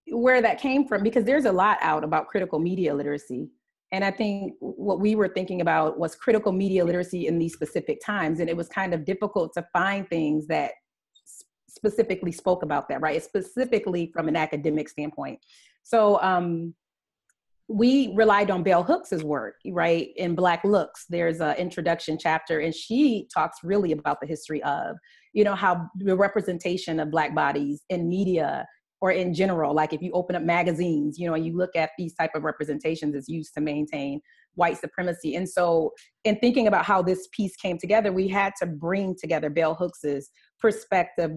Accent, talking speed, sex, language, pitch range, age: American, 185 wpm, female, English, 160-195 Hz, 30-49